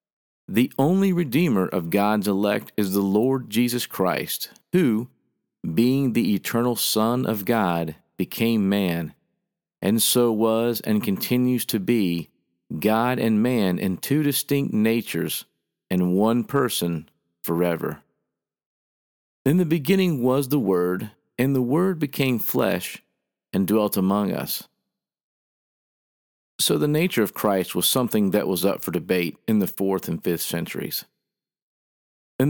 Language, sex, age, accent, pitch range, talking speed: English, male, 50-69, American, 95-135 Hz, 135 wpm